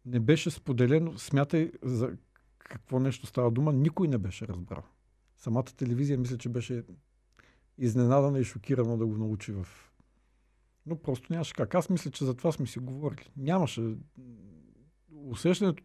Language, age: Bulgarian, 50-69